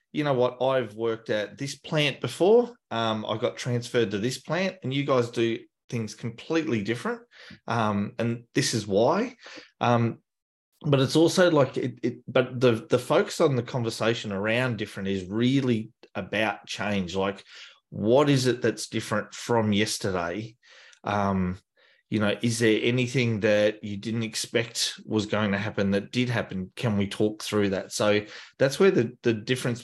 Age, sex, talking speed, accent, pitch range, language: 20-39, male, 170 wpm, Australian, 105-125 Hz, English